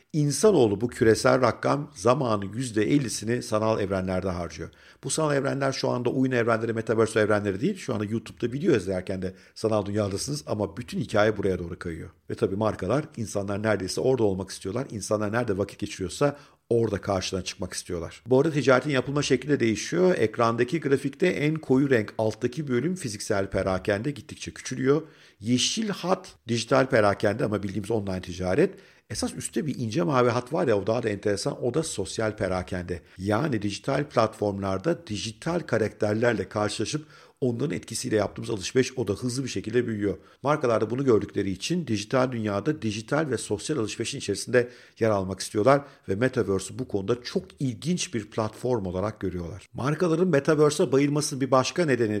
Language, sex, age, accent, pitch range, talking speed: Turkish, male, 50-69, native, 105-140 Hz, 155 wpm